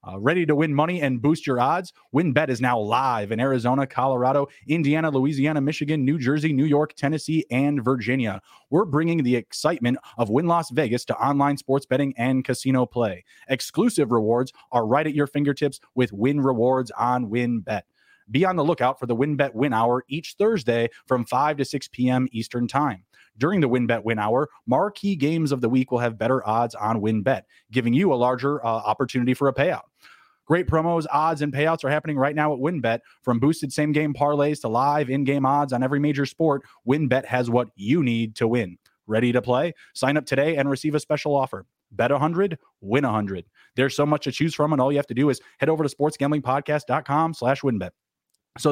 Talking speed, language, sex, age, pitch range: 195 wpm, English, male, 20-39, 125-150 Hz